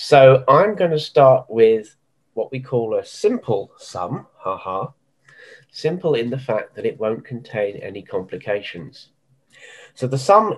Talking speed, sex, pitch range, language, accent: 140 wpm, male, 120-140 Hz, English, British